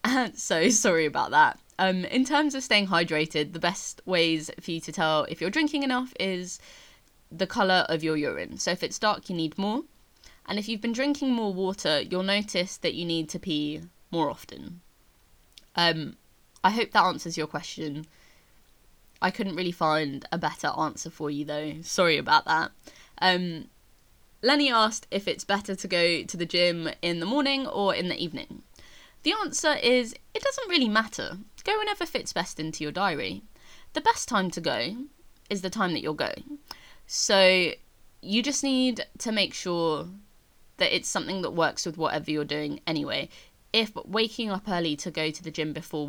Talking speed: 180 wpm